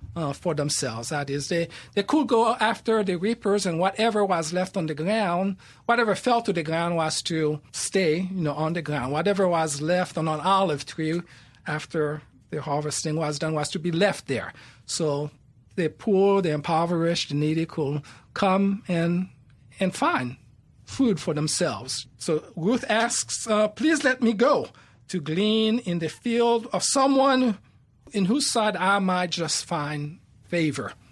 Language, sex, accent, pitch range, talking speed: English, male, American, 150-205 Hz, 170 wpm